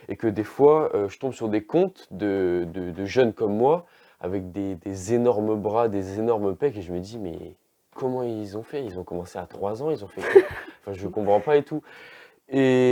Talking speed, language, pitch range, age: 230 wpm, French, 100-130 Hz, 20-39